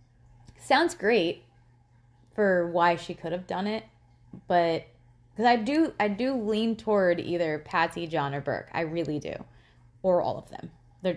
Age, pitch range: 20-39, 135-190 Hz